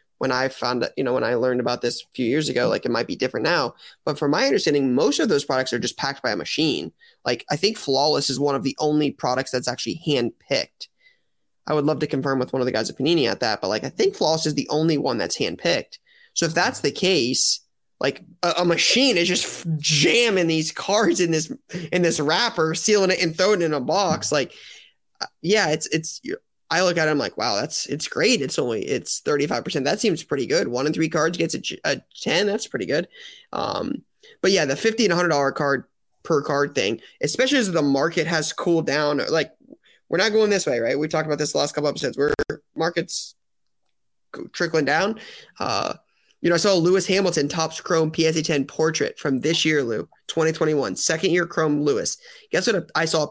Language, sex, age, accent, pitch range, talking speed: English, male, 20-39, American, 150-185 Hz, 225 wpm